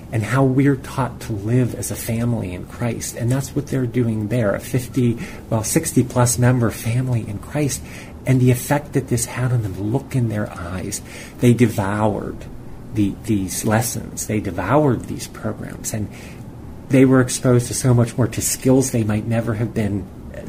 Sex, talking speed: male, 180 wpm